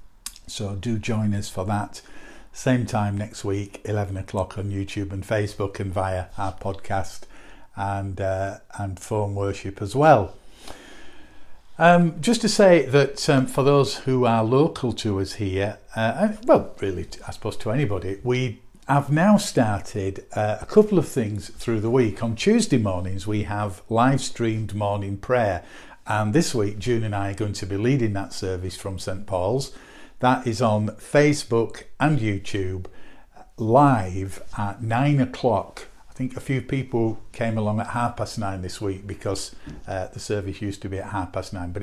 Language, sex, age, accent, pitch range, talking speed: English, male, 50-69, British, 100-125 Hz, 170 wpm